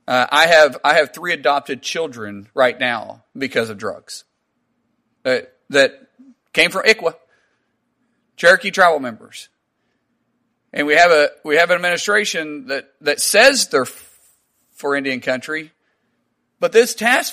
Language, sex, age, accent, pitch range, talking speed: English, male, 40-59, American, 155-230 Hz, 140 wpm